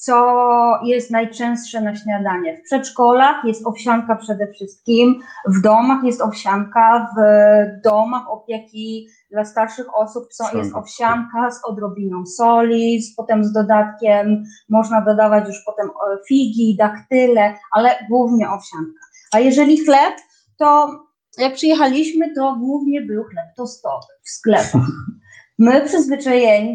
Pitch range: 215-260 Hz